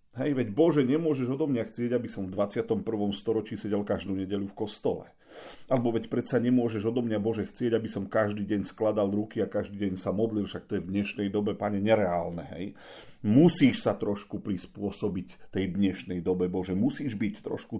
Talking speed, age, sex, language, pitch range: 185 wpm, 40-59, male, Slovak, 100-150 Hz